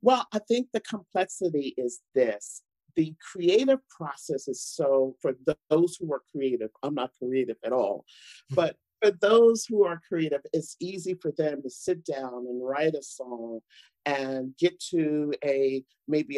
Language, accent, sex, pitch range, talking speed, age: English, American, male, 135-185 Hz, 165 wpm, 50-69